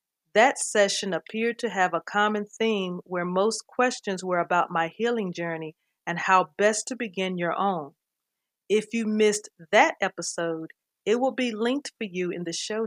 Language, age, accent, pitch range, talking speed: English, 40-59, American, 175-220 Hz, 175 wpm